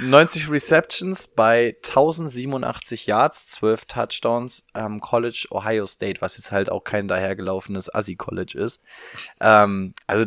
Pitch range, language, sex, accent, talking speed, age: 100-125 Hz, German, male, German, 130 wpm, 20-39